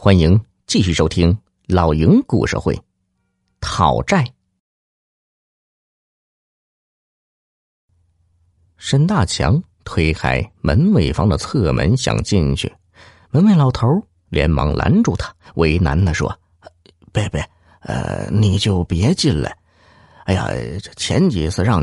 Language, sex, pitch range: Chinese, male, 85-115 Hz